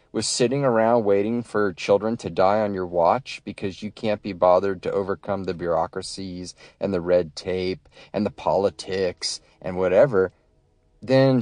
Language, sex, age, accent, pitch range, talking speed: English, male, 30-49, American, 90-110 Hz, 160 wpm